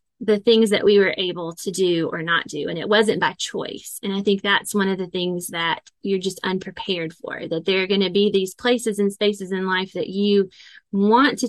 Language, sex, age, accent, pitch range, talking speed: English, female, 20-39, American, 180-210 Hz, 235 wpm